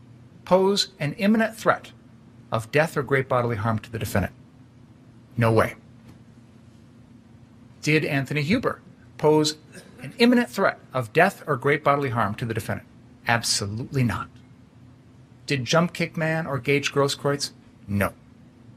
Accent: American